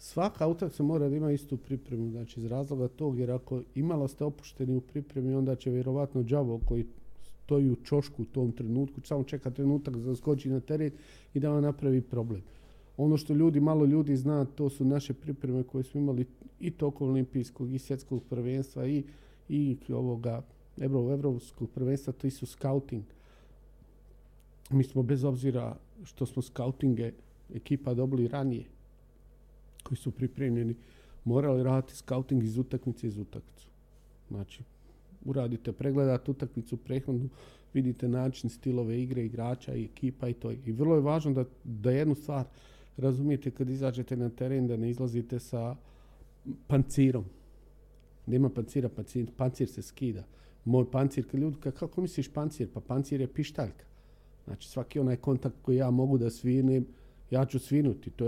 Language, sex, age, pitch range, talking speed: Croatian, male, 40-59, 125-140 Hz, 155 wpm